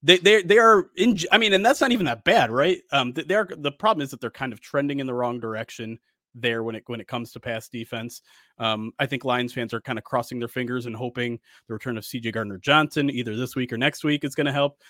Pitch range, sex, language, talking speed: 120-145 Hz, male, English, 265 wpm